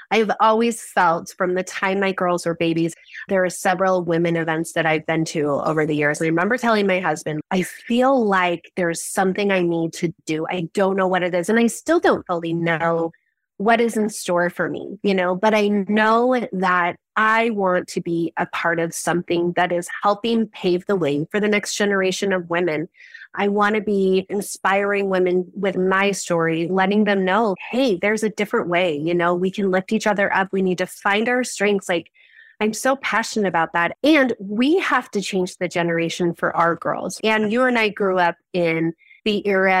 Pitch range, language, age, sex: 175-230 Hz, English, 30-49, female